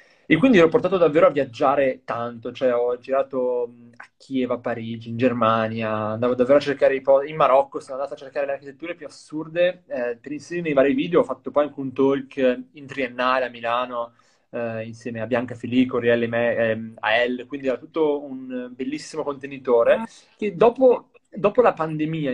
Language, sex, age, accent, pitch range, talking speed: Italian, male, 20-39, native, 125-155 Hz, 190 wpm